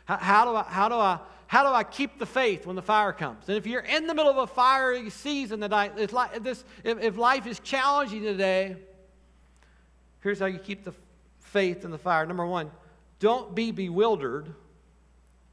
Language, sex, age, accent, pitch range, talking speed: English, male, 50-69, American, 185-240 Hz, 175 wpm